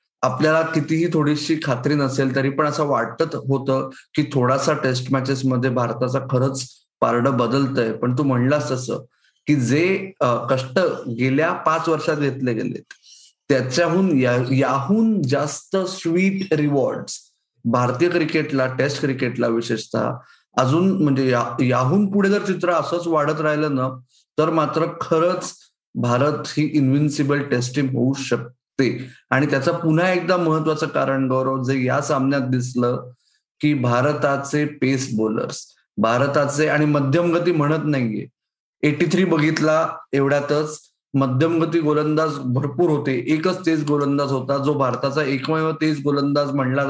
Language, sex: Marathi, male